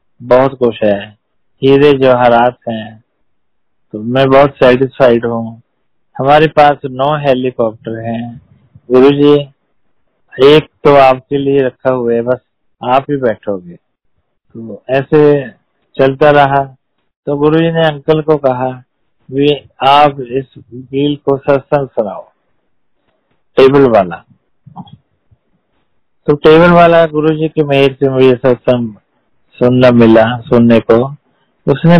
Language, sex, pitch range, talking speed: Hindi, male, 125-150 Hz, 120 wpm